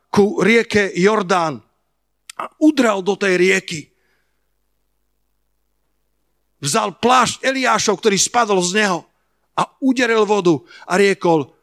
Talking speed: 105 wpm